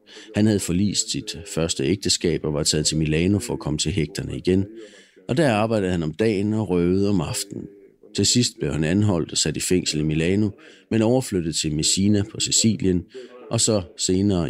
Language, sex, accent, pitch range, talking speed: Danish, male, native, 85-115 Hz, 195 wpm